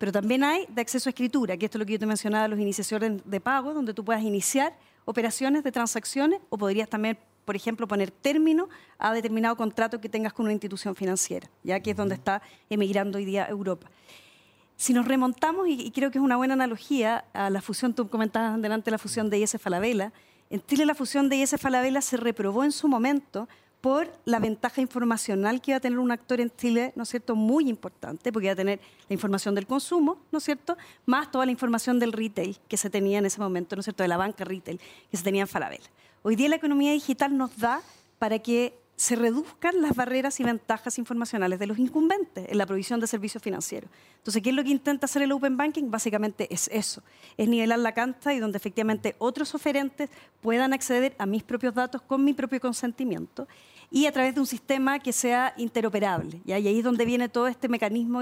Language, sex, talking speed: Spanish, female, 215 wpm